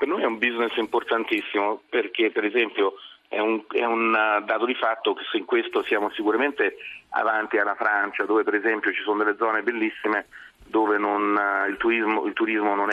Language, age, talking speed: Italian, 40-59, 165 wpm